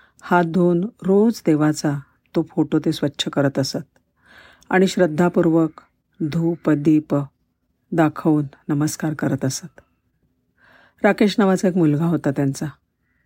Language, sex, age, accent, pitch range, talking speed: Marathi, female, 50-69, native, 155-195 Hz, 110 wpm